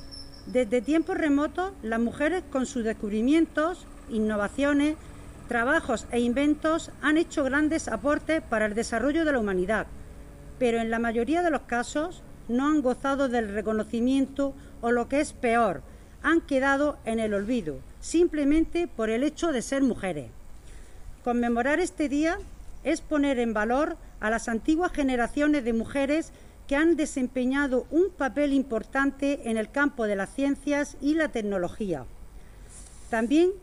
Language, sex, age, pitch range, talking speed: Spanish, female, 50-69, 230-305 Hz, 145 wpm